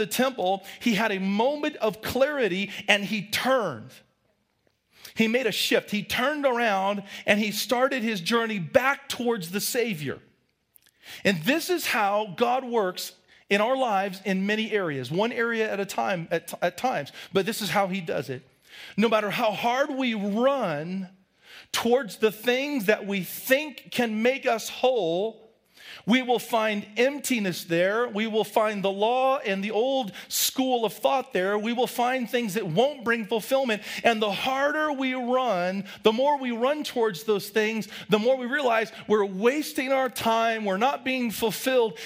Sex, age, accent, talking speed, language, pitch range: male, 40-59, American, 170 wpm, English, 205-255 Hz